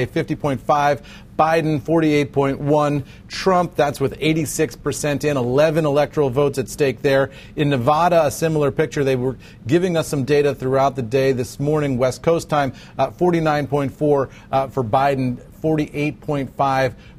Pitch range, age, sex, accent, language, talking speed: 130-155 Hz, 40-59, male, American, English, 130 wpm